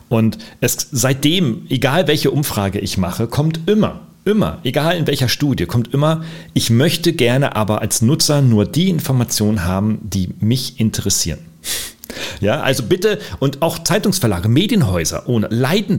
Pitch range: 105-155 Hz